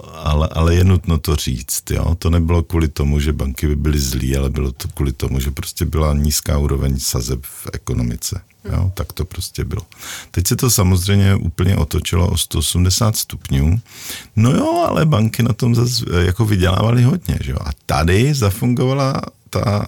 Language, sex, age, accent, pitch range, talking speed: Czech, male, 50-69, native, 80-110 Hz, 180 wpm